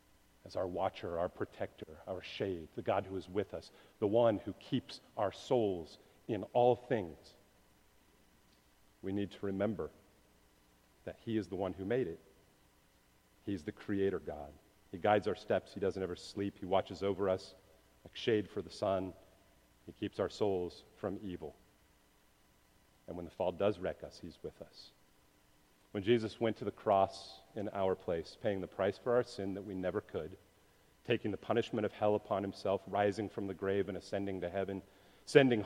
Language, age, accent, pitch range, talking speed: English, 40-59, American, 80-110 Hz, 180 wpm